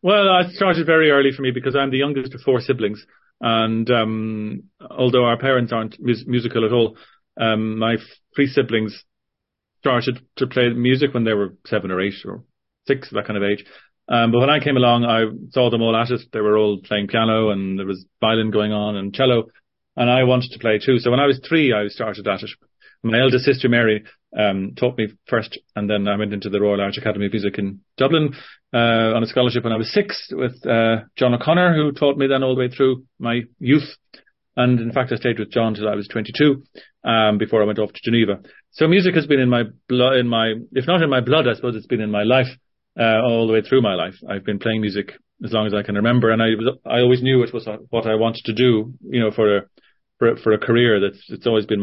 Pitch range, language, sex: 105-130 Hz, English, male